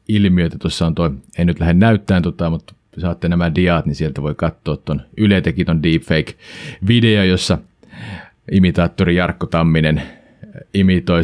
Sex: male